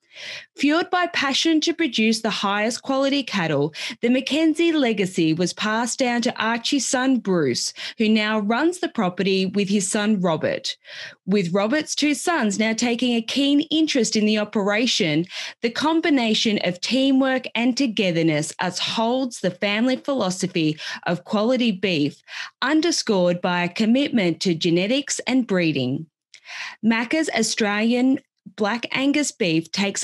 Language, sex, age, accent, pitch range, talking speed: English, female, 20-39, Australian, 195-270 Hz, 135 wpm